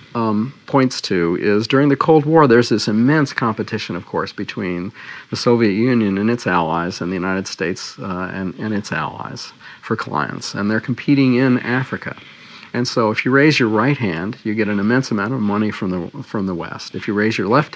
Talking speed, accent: 210 wpm, American